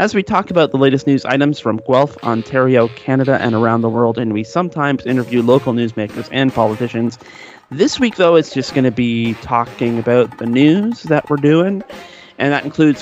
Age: 30-49